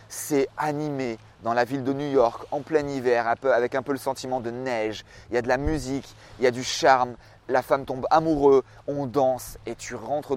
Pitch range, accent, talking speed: 120-155 Hz, French, 220 wpm